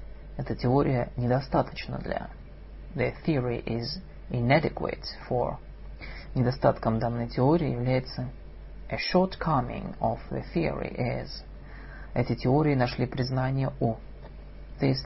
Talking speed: 100 wpm